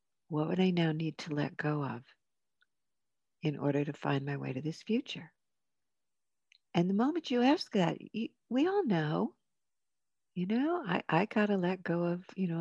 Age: 60-79